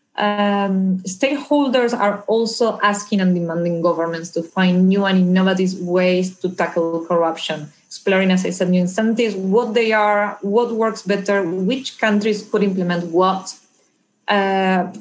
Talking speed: 140 wpm